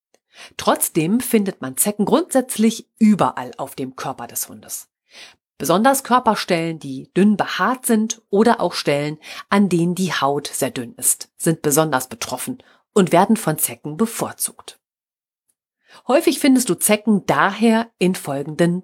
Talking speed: 135 wpm